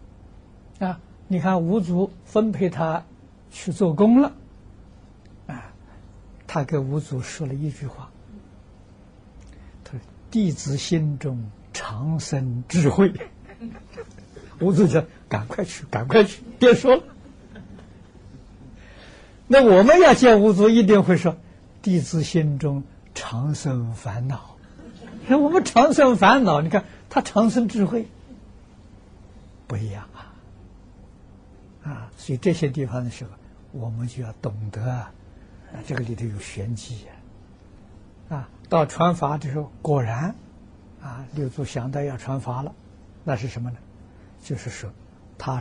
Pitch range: 100-160 Hz